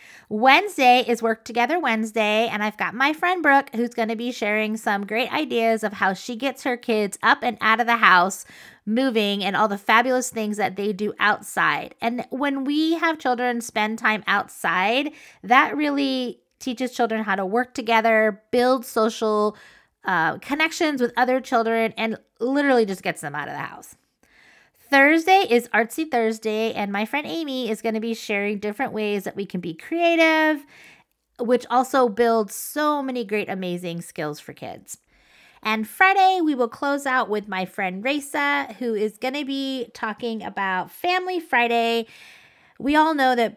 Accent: American